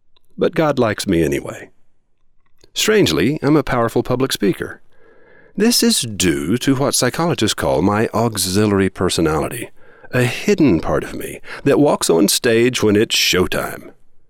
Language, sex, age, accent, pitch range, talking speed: English, male, 50-69, American, 105-145 Hz, 140 wpm